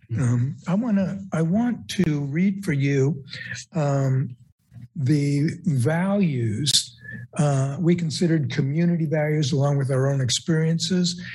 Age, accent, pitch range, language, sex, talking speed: 60-79, American, 130-170 Hz, English, male, 120 wpm